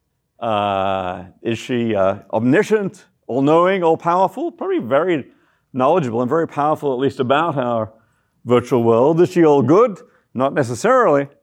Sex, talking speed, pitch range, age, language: male, 130 wpm, 125-160 Hz, 50-69, English